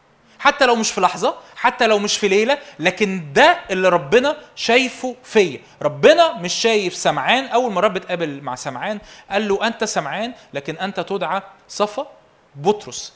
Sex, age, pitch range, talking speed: male, 20-39, 155-230 Hz, 160 wpm